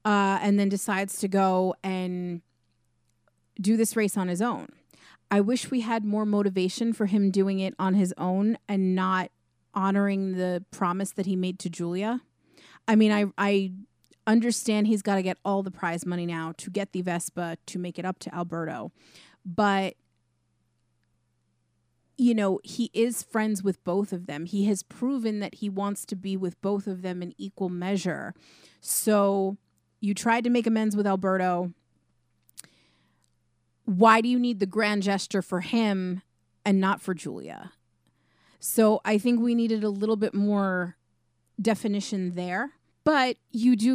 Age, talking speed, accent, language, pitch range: 30-49, 165 wpm, American, English, 180-210 Hz